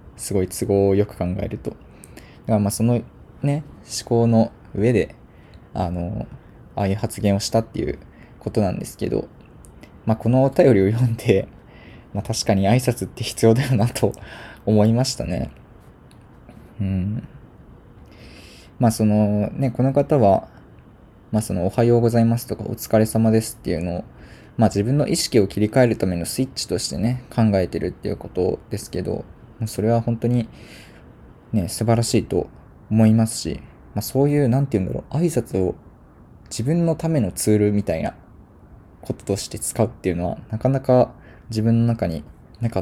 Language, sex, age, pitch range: Japanese, male, 20-39, 95-120 Hz